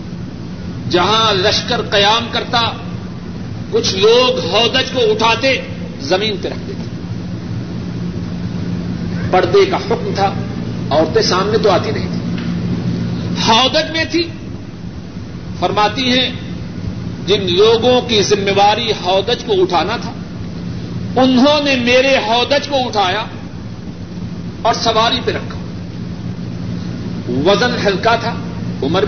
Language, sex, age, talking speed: Urdu, male, 50-69, 105 wpm